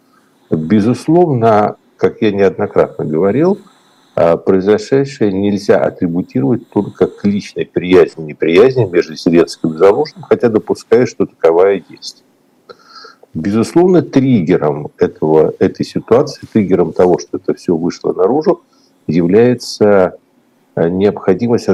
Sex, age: male, 50-69